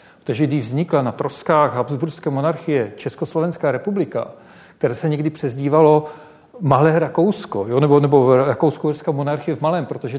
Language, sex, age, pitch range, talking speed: Czech, male, 40-59, 140-165 Hz, 135 wpm